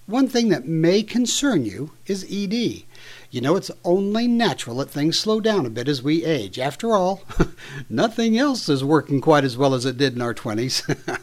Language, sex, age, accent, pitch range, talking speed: English, male, 60-79, American, 140-215 Hz, 200 wpm